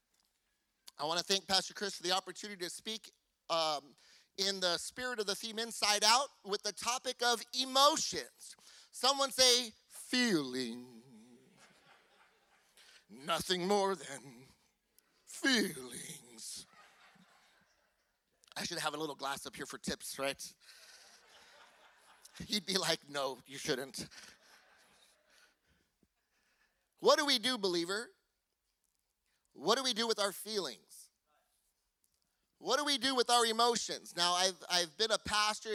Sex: male